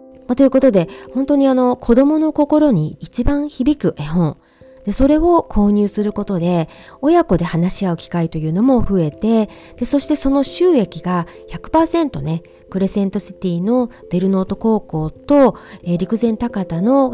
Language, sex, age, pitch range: Japanese, female, 40-59, 170-255 Hz